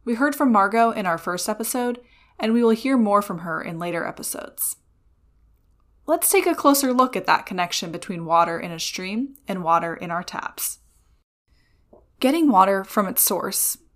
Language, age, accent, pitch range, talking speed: English, 10-29, American, 180-235 Hz, 175 wpm